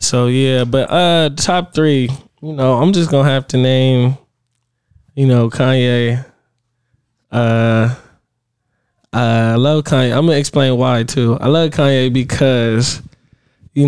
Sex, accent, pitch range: male, American, 120-145 Hz